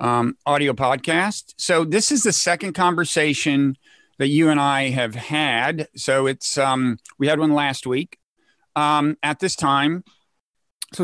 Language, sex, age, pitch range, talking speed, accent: English, male, 50-69, 135-160 Hz, 150 wpm, American